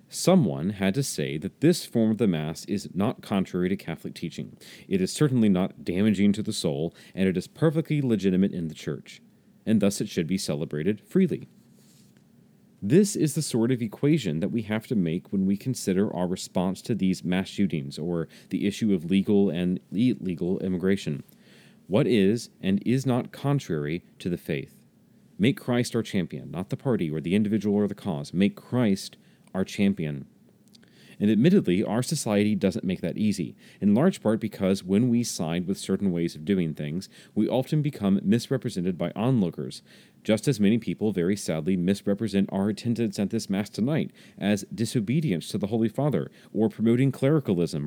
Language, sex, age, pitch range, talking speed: English, male, 30-49, 95-130 Hz, 180 wpm